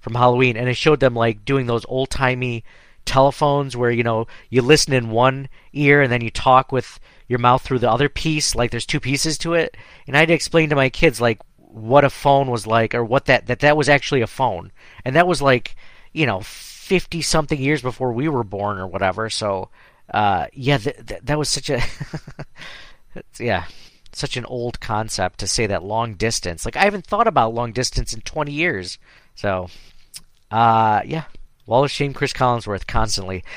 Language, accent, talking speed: English, American, 195 wpm